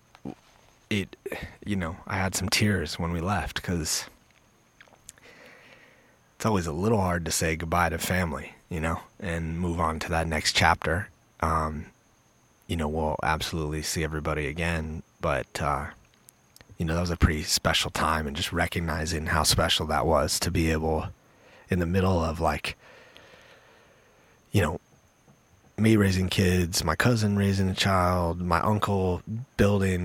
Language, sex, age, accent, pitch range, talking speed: English, male, 30-49, American, 80-95 Hz, 150 wpm